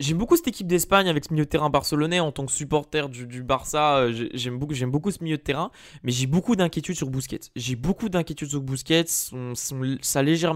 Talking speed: 215 wpm